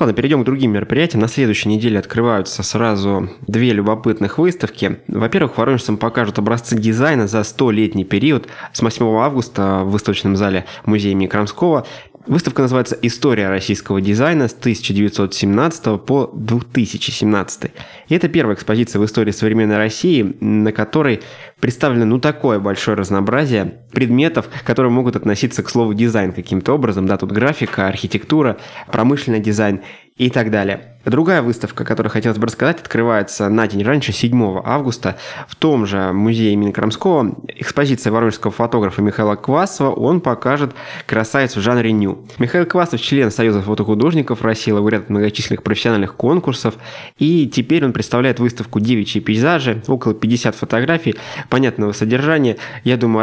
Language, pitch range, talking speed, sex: Russian, 105-130 Hz, 145 wpm, male